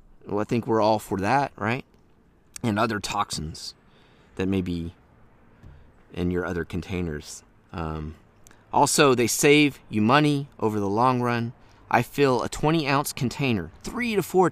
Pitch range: 95-135 Hz